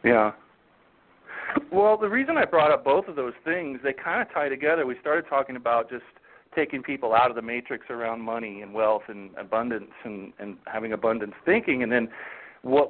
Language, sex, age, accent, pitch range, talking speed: English, male, 40-59, American, 130-195 Hz, 190 wpm